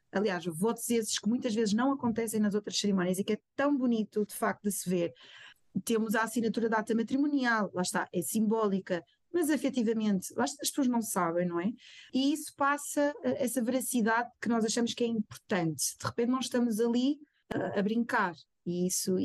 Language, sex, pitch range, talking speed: Portuguese, female, 195-275 Hz, 185 wpm